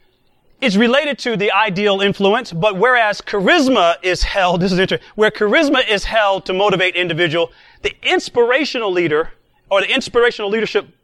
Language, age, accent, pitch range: English, 30-49, American, 175-215 Hz